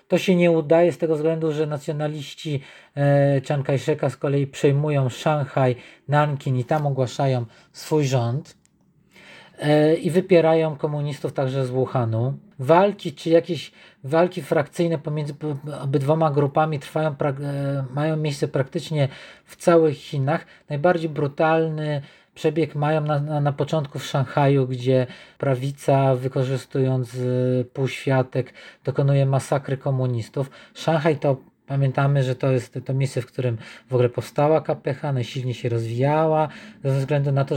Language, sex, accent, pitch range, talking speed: Polish, male, native, 130-155 Hz, 130 wpm